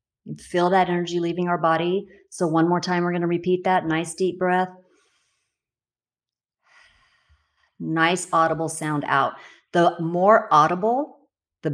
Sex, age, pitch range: female, 40-59, 150-180 Hz